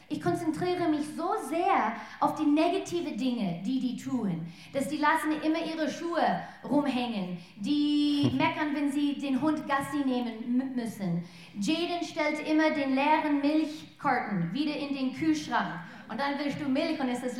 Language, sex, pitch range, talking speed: German, female, 245-315 Hz, 160 wpm